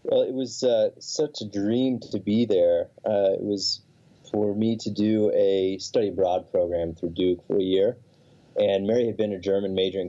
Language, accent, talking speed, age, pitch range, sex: English, American, 200 wpm, 30-49, 95-115 Hz, male